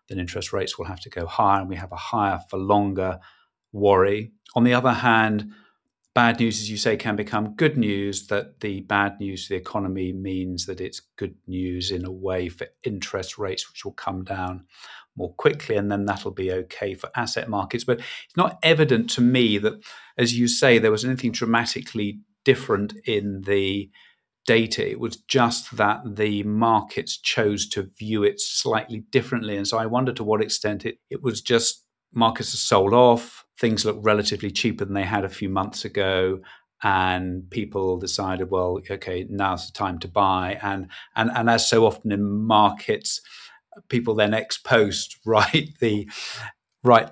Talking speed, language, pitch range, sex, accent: 180 wpm, English, 95-115 Hz, male, British